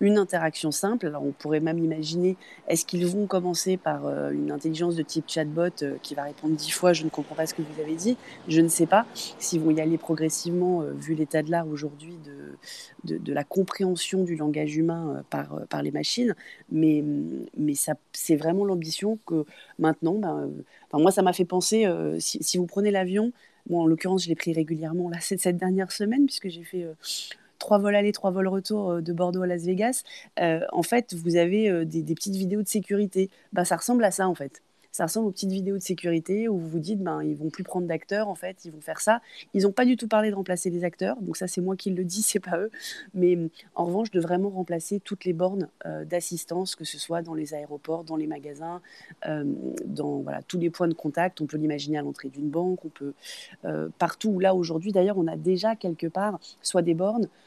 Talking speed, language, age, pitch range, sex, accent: 235 wpm, French, 30-49, 155-190 Hz, female, French